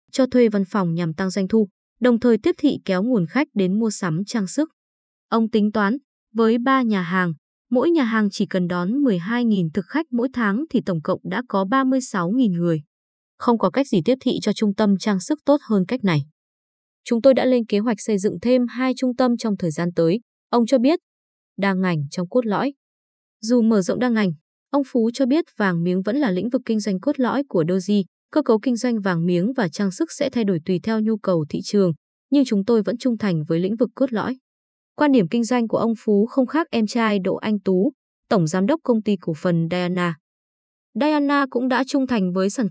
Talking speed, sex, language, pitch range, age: 230 wpm, female, Vietnamese, 190-250 Hz, 20-39